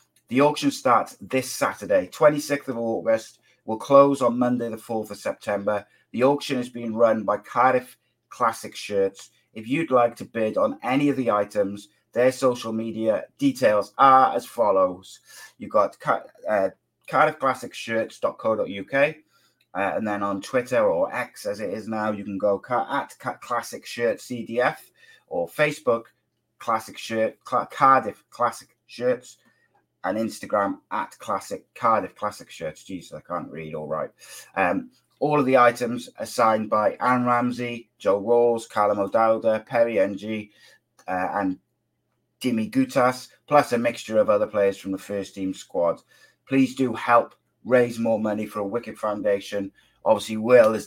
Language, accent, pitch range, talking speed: English, British, 105-130 Hz, 155 wpm